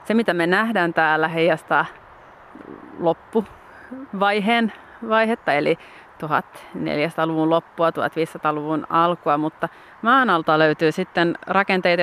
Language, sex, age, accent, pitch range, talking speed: Finnish, female, 30-49, native, 160-190 Hz, 90 wpm